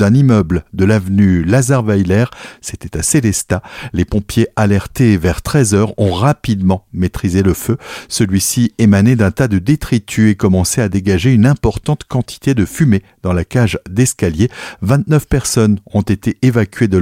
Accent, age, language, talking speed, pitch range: French, 60-79, French, 150 wpm, 95-125 Hz